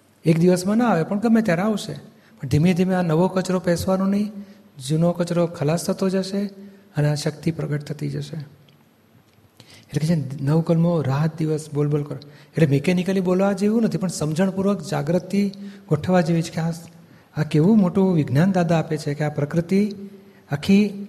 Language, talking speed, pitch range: Gujarati, 170 wpm, 160-200 Hz